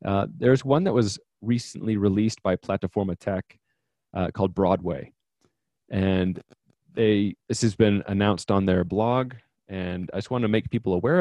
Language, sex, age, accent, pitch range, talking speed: English, male, 30-49, American, 100-115 Hz, 160 wpm